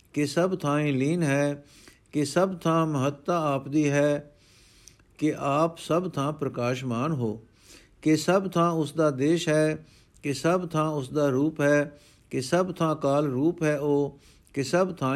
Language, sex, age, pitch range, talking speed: Punjabi, male, 60-79, 135-175 Hz, 160 wpm